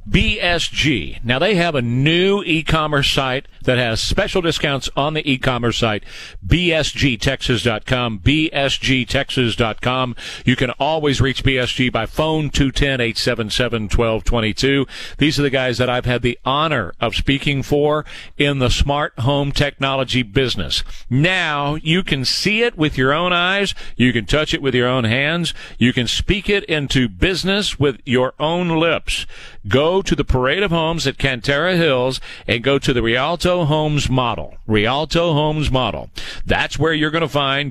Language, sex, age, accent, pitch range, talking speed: English, male, 50-69, American, 125-165 Hz, 155 wpm